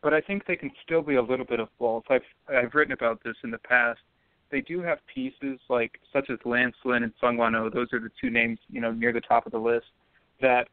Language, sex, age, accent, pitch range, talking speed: English, male, 20-39, American, 115-130 Hz, 250 wpm